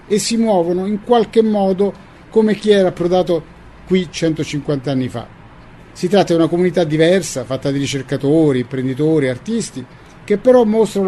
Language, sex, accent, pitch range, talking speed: Portuguese, male, Italian, 140-185 Hz, 150 wpm